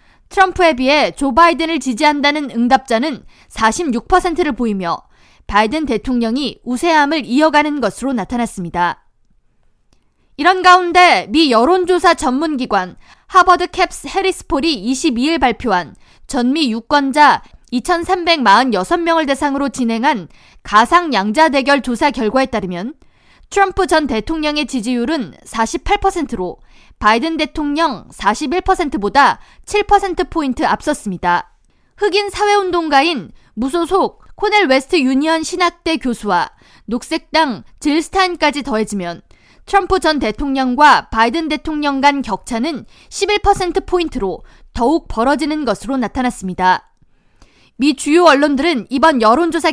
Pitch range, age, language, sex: 245-335 Hz, 20-39, Korean, female